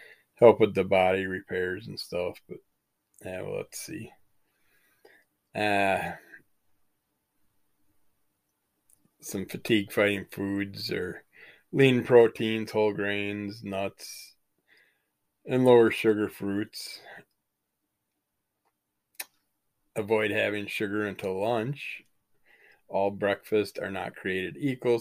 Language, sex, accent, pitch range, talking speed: English, male, American, 100-110 Hz, 90 wpm